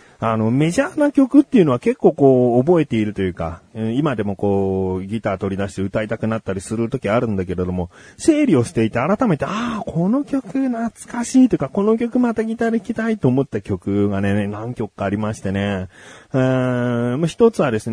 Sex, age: male, 40-59